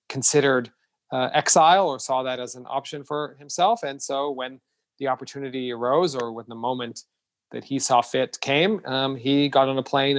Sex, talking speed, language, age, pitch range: male, 190 wpm, English, 40-59, 125-145 Hz